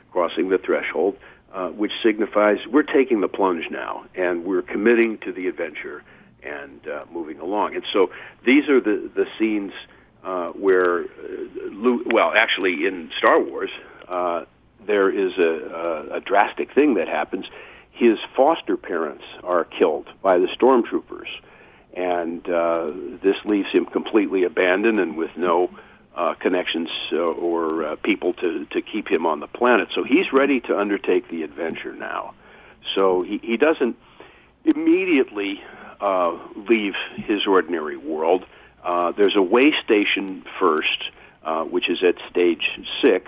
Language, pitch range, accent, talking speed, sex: English, 300-390 Hz, American, 150 wpm, male